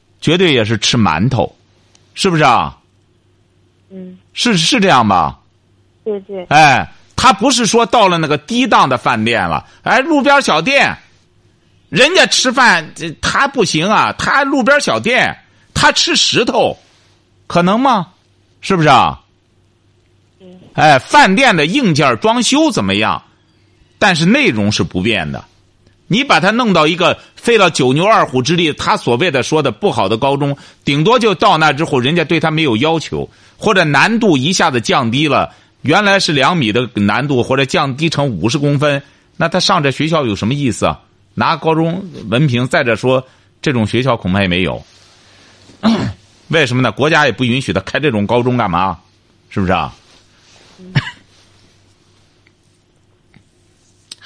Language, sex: Chinese, male